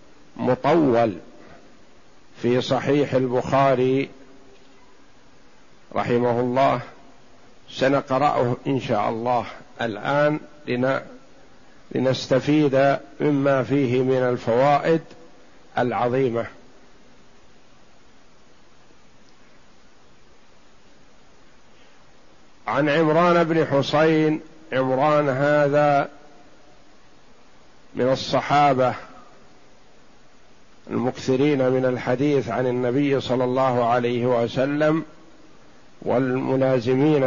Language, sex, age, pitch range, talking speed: Arabic, male, 50-69, 125-145 Hz, 55 wpm